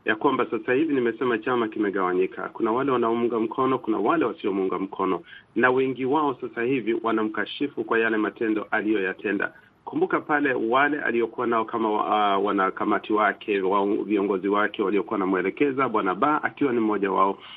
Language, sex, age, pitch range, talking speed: Swahili, male, 40-59, 110-135 Hz, 155 wpm